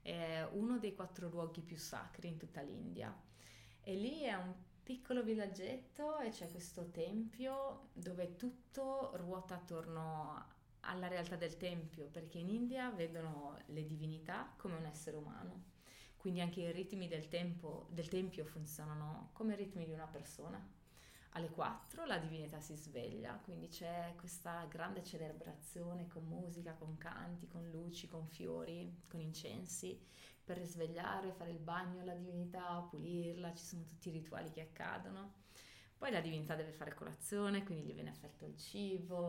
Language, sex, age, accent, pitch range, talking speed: Italian, female, 20-39, native, 155-185 Hz, 155 wpm